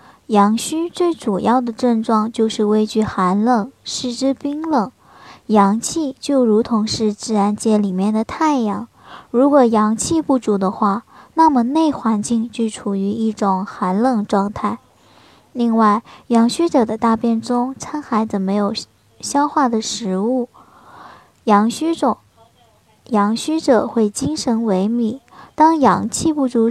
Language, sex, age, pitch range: Chinese, male, 10-29, 215-275 Hz